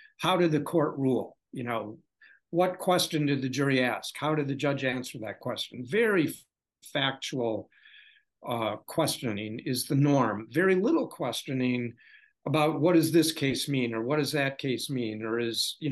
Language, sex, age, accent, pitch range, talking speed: English, male, 60-79, American, 125-165 Hz, 175 wpm